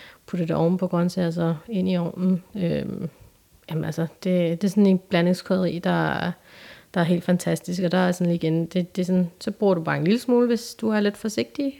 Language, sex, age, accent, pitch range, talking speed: Danish, female, 30-49, native, 170-205 Hz, 235 wpm